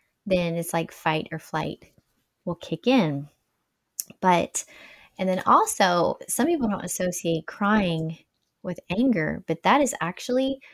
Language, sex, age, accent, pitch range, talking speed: English, female, 20-39, American, 165-230 Hz, 135 wpm